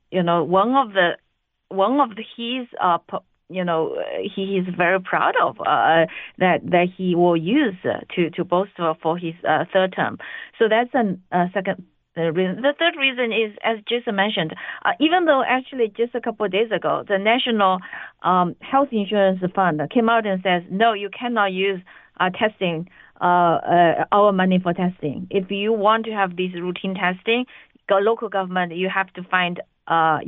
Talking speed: 185 wpm